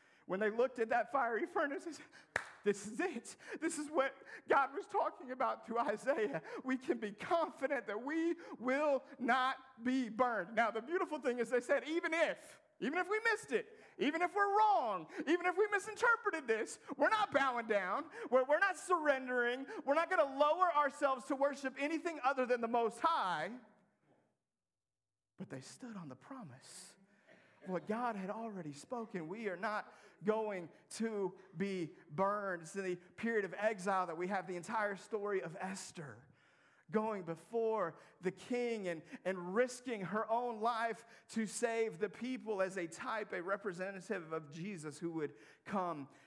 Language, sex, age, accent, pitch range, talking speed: English, male, 40-59, American, 190-285 Hz, 170 wpm